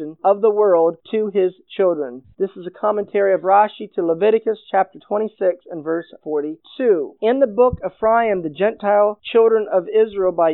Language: English